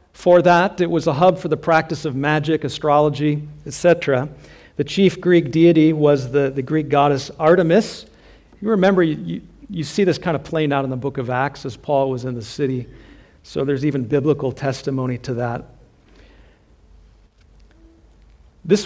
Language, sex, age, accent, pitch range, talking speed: English, male, 50-69, American, 130-165 Hz, 165 wpm